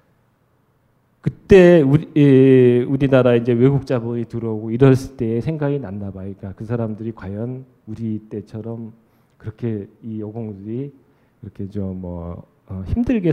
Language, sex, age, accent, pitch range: Korean, male, 40-59, native, 105-130 Hz